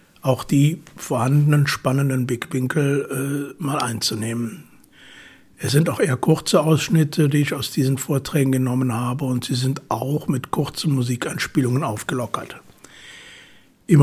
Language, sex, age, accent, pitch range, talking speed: German, male, 60-79, German, 120-140 Hz, 130 wpm